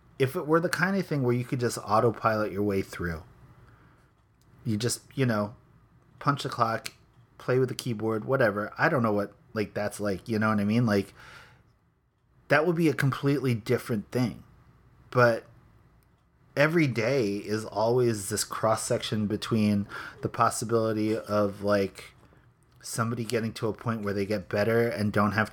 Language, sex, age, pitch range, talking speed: English, male, 30-49, 110-130 Hz, 170 wpm